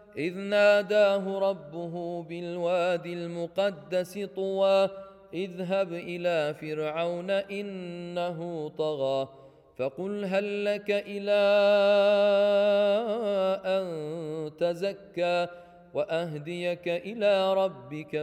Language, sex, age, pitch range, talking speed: English, male, 30-49, 195-260 Hz, 65 wpm